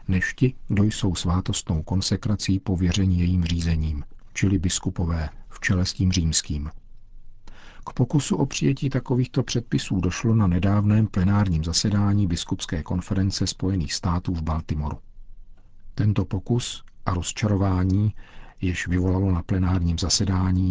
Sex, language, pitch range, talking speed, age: male, Czech, 90-100 Hz, 120 wpm, 50-69